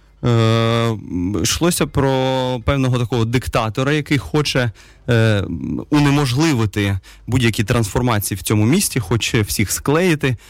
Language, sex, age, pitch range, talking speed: Russian, male, 20-39, 105-145 Hz, 95 wpm